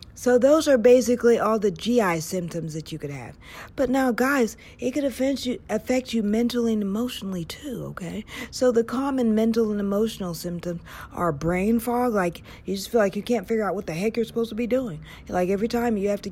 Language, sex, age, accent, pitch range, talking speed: English, female, 40-59, American, 190-245 Hz, 215 wpm